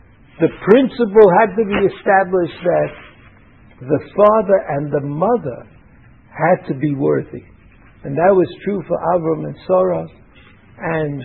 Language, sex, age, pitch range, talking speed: English, male, 60-79, 145-200 Hz, 135 wpm